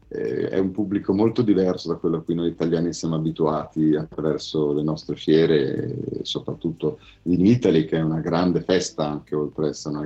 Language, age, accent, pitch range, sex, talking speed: Italian, 40-59, native, 80-95 Hz, male, 180 wpm